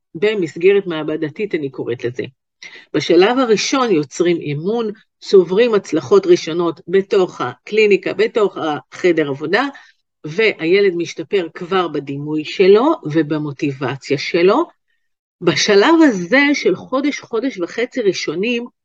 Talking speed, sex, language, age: 100 wpm, female, Hebrew, 50-69